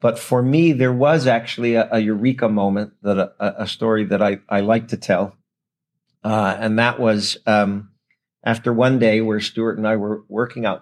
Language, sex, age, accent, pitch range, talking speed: English, male, 50-69, American, 105-130 Hz, 195 wpm